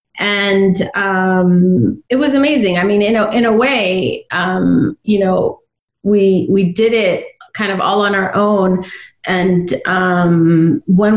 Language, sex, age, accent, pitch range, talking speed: English, female, 30-49, American, 180-215 Hz, 150 wpm